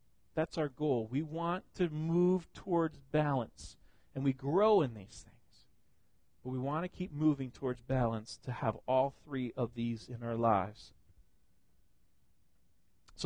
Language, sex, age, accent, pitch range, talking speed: English, male, 40-59, American, 115-165 Hz, 150 wpm